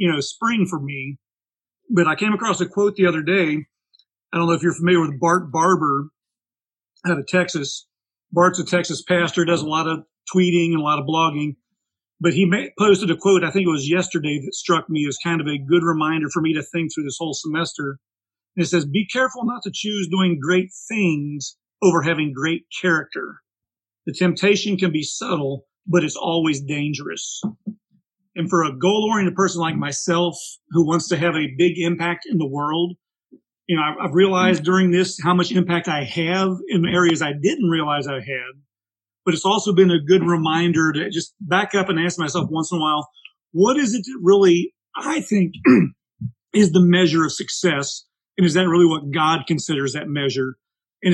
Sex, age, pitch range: male, 40-59, 155-185 Hz